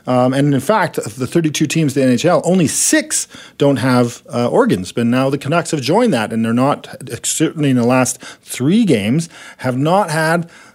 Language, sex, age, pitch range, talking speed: English, male, 40-59, 115-165 Hz, 195 wpm